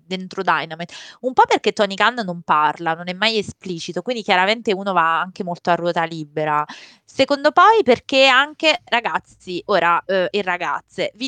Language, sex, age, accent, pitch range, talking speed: Italian, female, 20-39, native, 170-230 Hz, 170 wpm